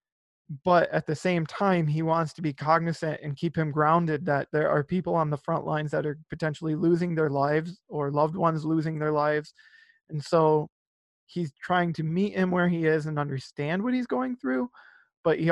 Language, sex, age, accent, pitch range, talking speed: English, male, 20-39, American, 145-170 Hz, 200 wpm